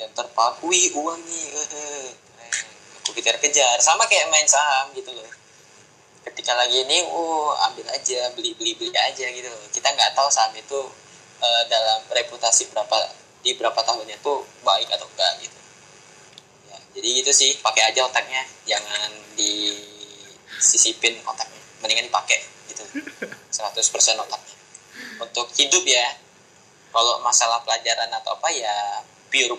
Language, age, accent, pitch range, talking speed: Indonesian, 10-29, native, 115-155 Hz, 130 wpm